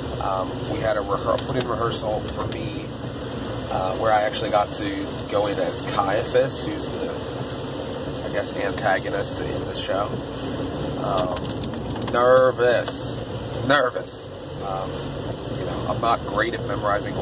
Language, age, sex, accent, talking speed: English, 30-49, male, American, 135 wpm